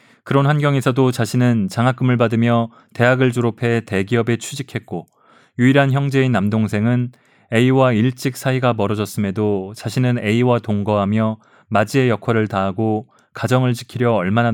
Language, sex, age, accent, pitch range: Korean, male, 20-39, native, 105-130 Hz